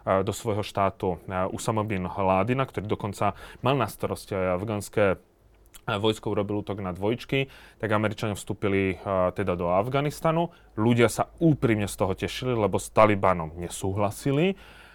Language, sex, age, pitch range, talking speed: Slovak, male, 30-49, 100-125 Hz, 135 wpm